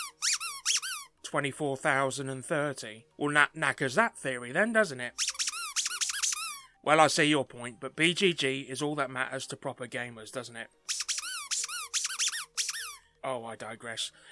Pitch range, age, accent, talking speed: 130-190 Hz, 30-49, British, 115 wpm